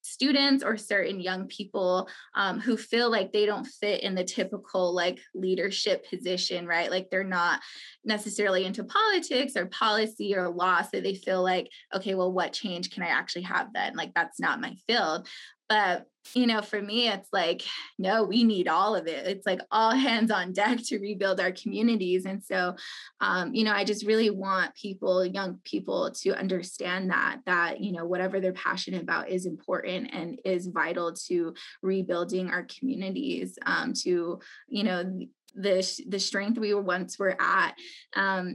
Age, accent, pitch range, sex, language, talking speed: 20-39, American, 185-220 Hz, female, English, 175 wpm